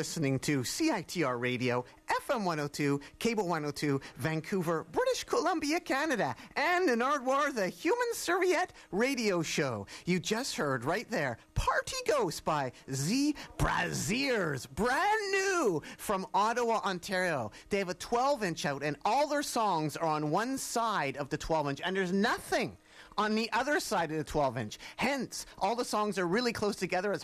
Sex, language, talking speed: male, English, 155 wpm